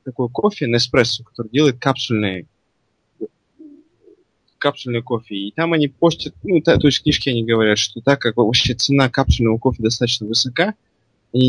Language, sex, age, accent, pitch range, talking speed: Russian, male, 20-39, native, 110-140 Hz, 150 wpm